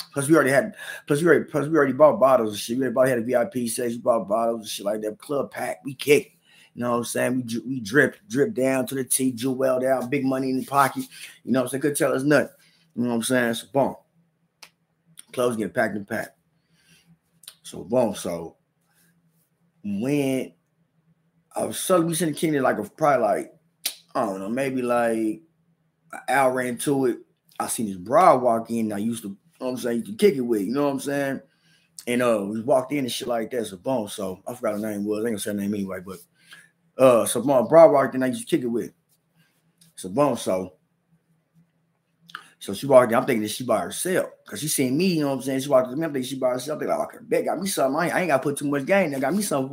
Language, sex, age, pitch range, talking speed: English, male, 20-39, 125-165 Hz, 250 wpm